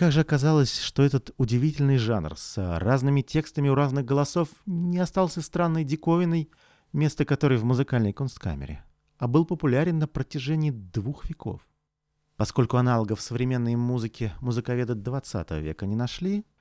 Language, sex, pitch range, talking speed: Russian, male, 110-155 Hz, 135 wpm